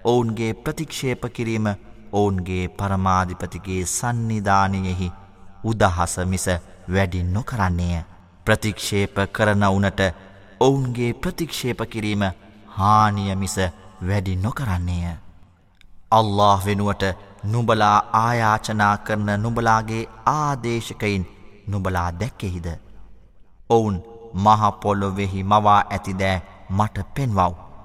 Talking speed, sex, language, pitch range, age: 95 wpm, male, Arabic, 95-110 Hz, 30-49